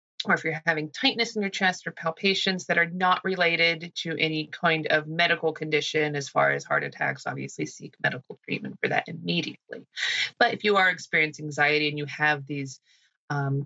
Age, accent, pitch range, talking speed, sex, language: 30-49, American, 155-230 Hz, 190 wpm, female, English